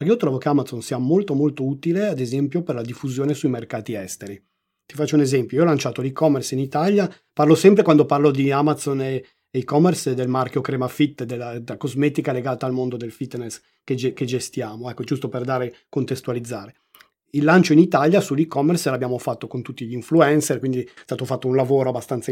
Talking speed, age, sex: 195 wpm, 30-49, male